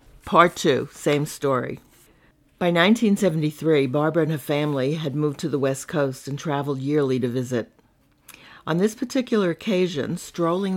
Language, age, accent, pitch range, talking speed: English, 60-79, American, 150-195 Hz, 145 wpm